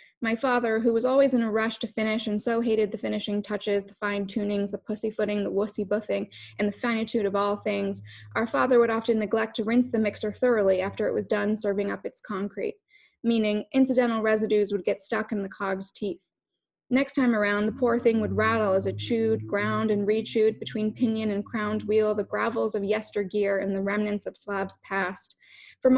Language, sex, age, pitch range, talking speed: English, female, 20-39, 205-240 Hz, 210 wpm